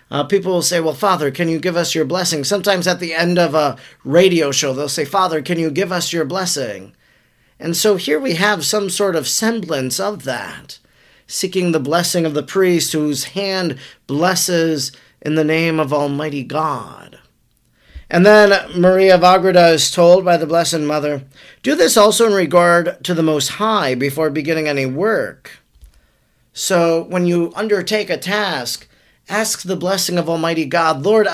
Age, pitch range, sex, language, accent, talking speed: 40-59, 145-185 Hz, male, English, American, 175 wpm